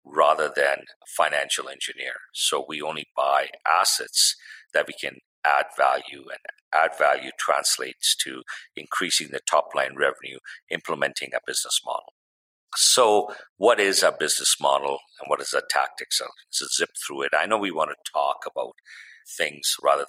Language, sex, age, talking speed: English, male, 50-69, 155 wpm